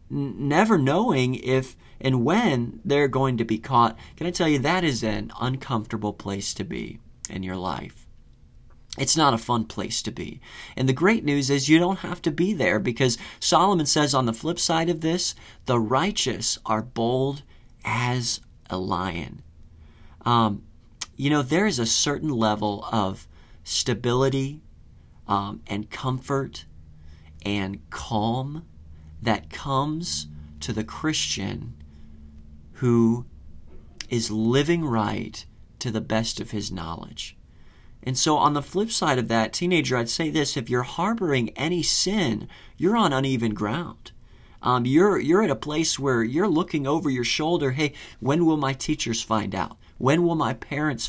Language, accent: English, American